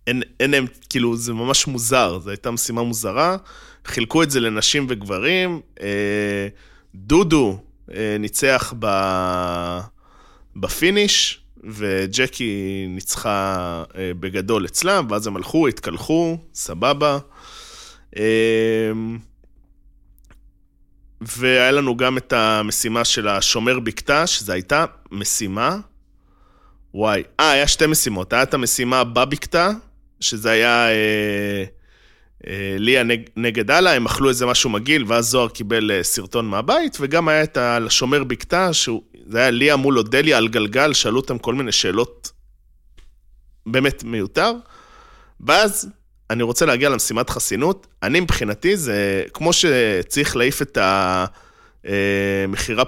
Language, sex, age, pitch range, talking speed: Hebrew, male, 20-39, 100-135 Hz, 95 wpm